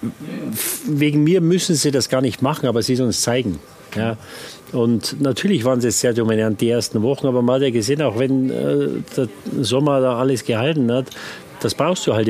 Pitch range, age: 120-145 Hz, 40-59